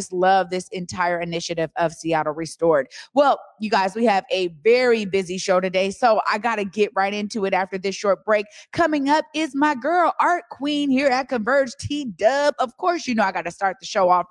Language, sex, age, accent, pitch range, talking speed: English, female, 30-49, American, 195-260 Hz, 215 wpm